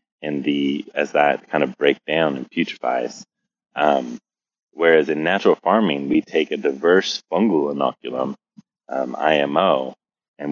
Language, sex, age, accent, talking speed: English, male, 20-39, American, 135 wpm